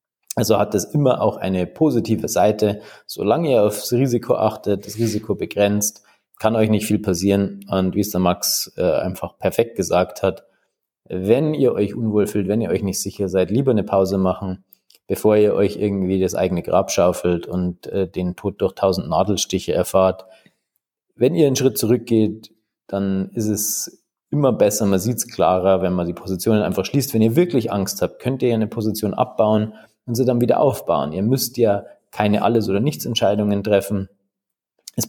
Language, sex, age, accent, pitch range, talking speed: German, male, 30-49, German, 95-115 Hz, 180 wpm